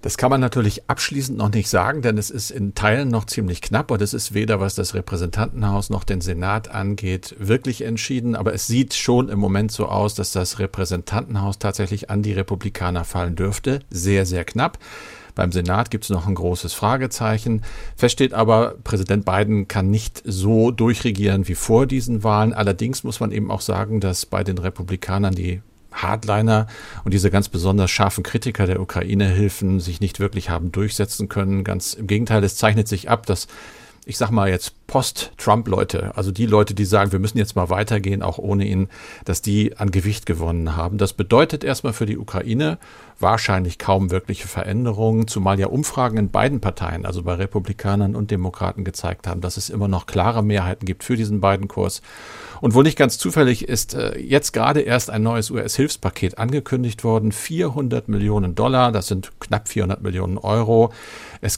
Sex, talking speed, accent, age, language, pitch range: male, 180 wpm, German, 50-69, German, 95-115 Hz